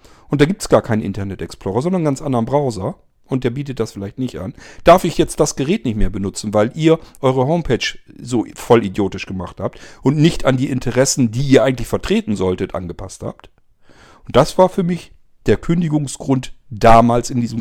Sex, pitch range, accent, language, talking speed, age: male, 100-130 Hz, German, German, 200 wpm, 40-59